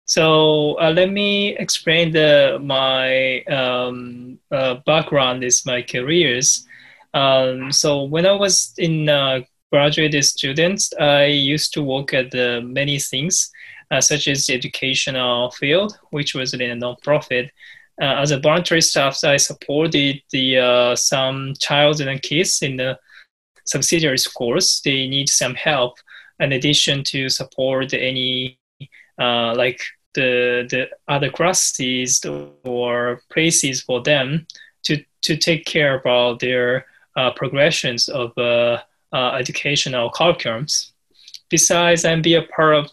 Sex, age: male, 20-39